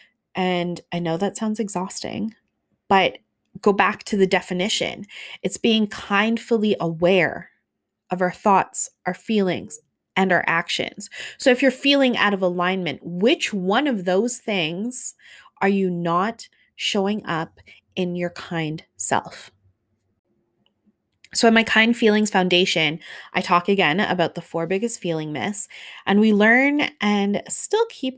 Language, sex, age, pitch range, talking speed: English, female, 20-39, 175-225 Hz, 140 wpm